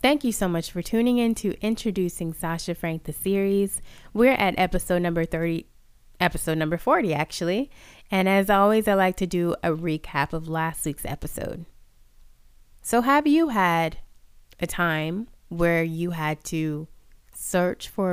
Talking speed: 155 wpm